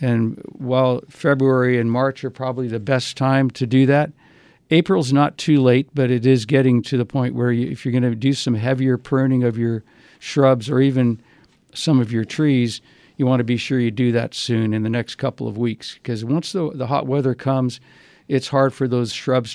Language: English